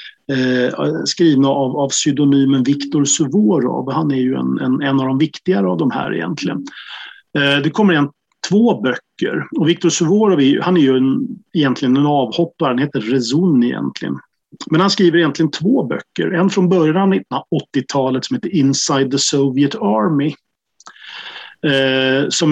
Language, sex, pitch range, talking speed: Swedish, male, 135-170 Hz, 150 wpm